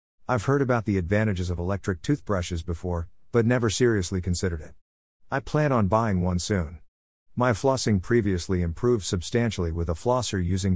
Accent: American